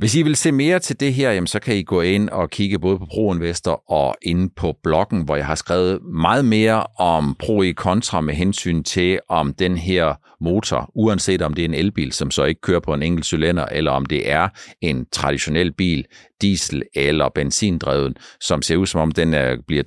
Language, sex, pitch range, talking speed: Danish, male, 80-105 Hz, 210 wpm